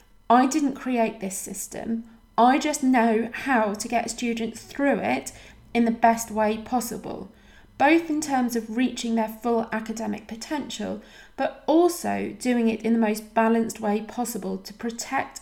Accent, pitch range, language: British, 210-255 Hz, English